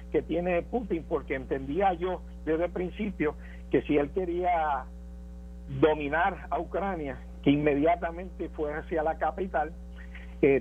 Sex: male